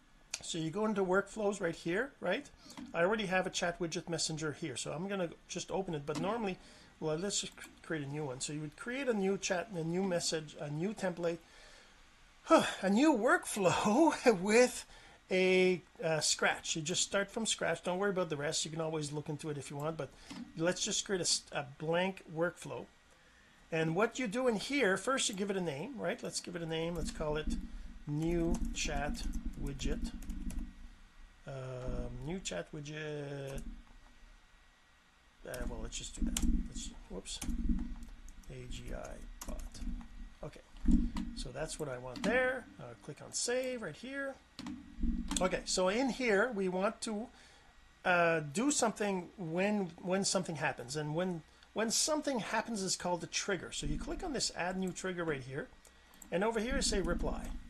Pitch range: 155-220 Hz